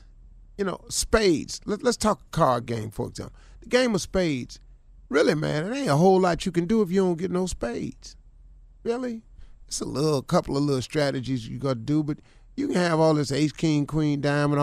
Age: 40-59